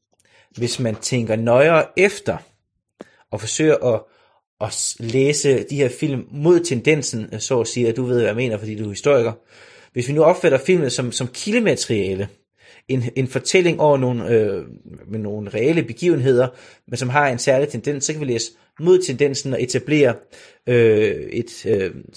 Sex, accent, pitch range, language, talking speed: male, native, 110-145 Hz, Danish, 170 wpm